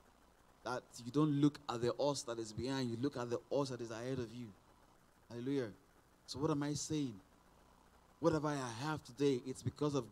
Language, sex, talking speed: English, male, 200 wpm